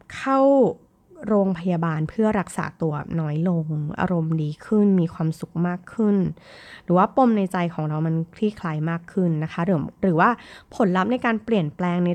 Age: 20-39